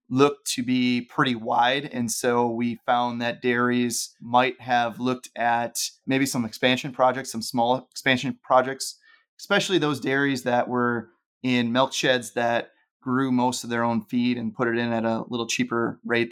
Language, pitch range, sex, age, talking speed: English, 115-130 Hz, male, 30-49, 175 wpm